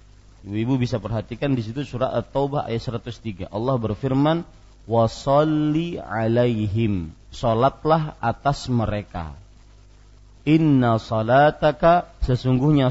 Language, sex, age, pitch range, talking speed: Malay, male, 40-59, 110-145 Hz, 90 wpm